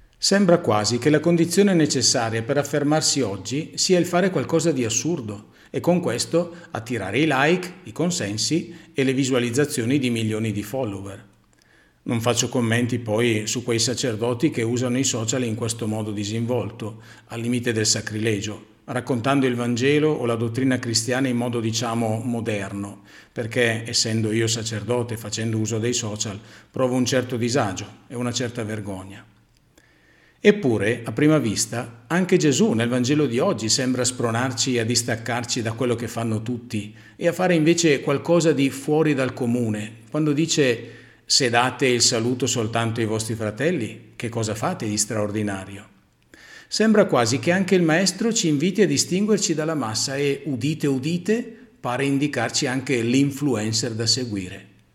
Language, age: Italian, 40-59